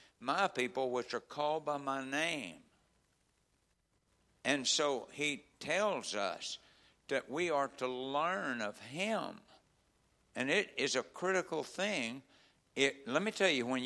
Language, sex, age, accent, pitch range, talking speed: English, male, 60-79, American, 125-160 Hz, 140 wpm